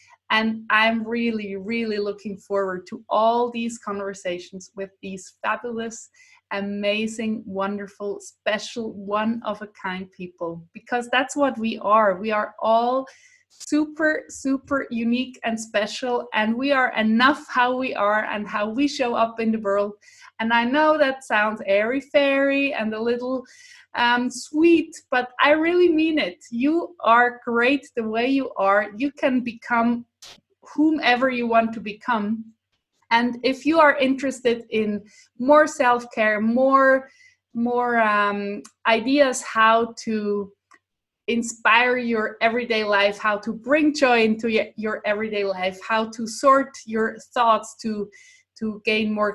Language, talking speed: English, 135 wpm